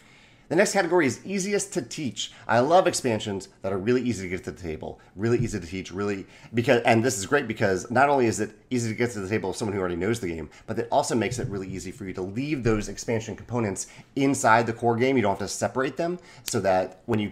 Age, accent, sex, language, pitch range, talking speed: 30-49, American, male, English, 95-125 Hz, 260 wpm